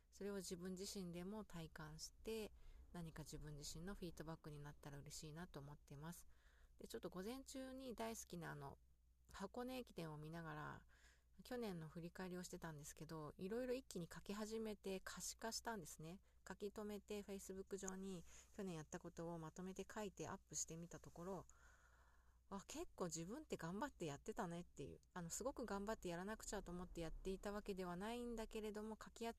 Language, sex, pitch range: Japanese, female, 160-210 Hz